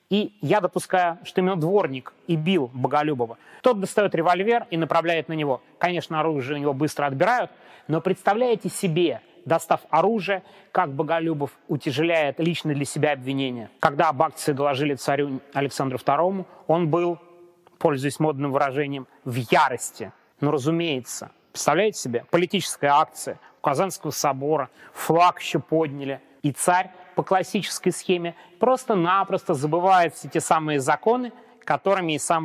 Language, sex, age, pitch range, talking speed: Russian, male, 30-49, 150-205 Hz, 135 wpm